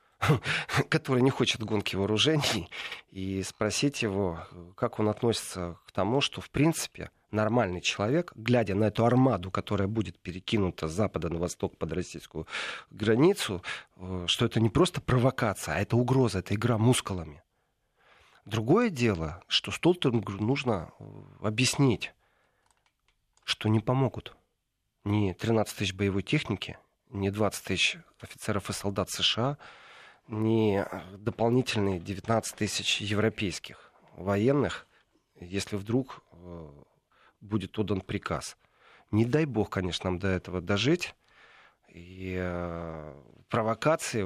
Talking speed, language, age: 115 wpm, Russian, 40-59